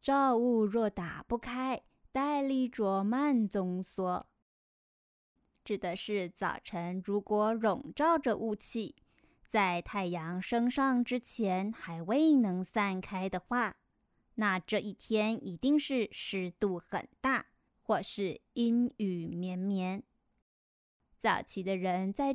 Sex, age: female, 20-39